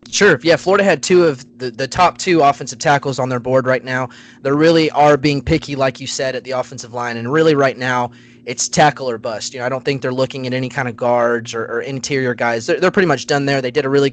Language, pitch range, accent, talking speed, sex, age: English, 120-145 Hz, American, 270 wpm, male, 20-39